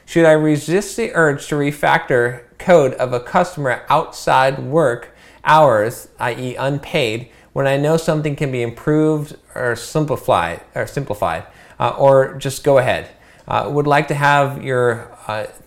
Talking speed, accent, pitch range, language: 145 wpm, American, 125-160 Hz, English